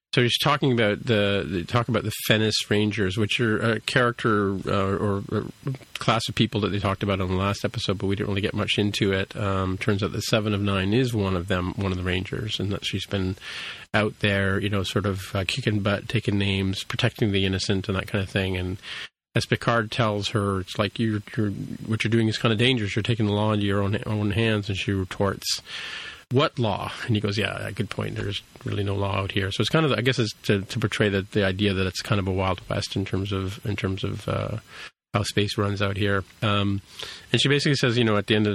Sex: male